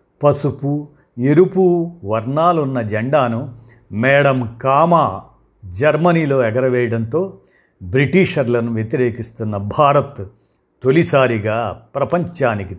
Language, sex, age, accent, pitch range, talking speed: Telugu, male, 50-69, native, 115-155 Hz, 60 wpm